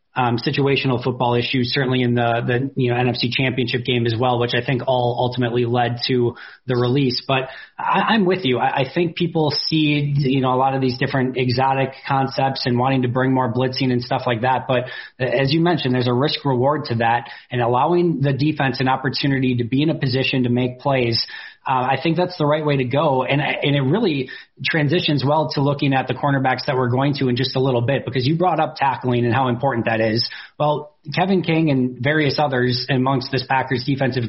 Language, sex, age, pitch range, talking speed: English, male, 20-39, 125-145 Hz, 220 wpm